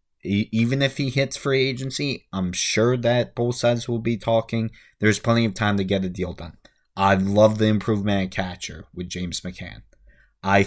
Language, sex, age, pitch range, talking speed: English, male, 20-39, 100-130 Hz, 185 wpm